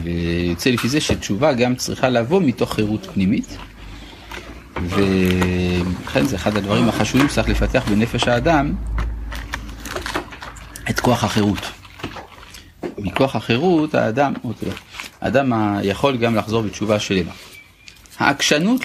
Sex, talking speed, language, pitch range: male, 105 wpm, Hebrew, 95-125 Hz